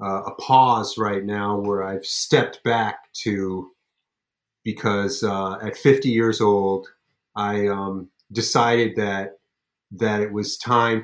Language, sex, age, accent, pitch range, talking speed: English, male, 30-49, American, 100-125 Hz, 130 wpm